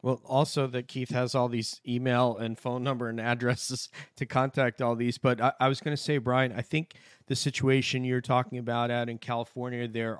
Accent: American